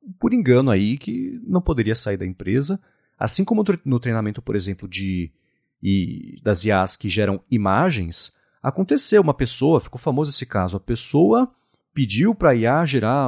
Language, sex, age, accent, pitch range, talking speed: Portuguese, male, 40-59, Brazilian, 105-170 Hz, 165 wpm